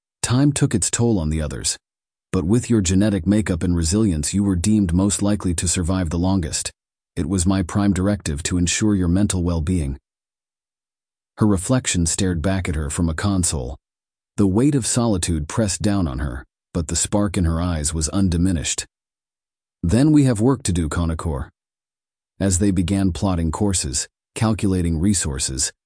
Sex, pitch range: male, 80-100 Hz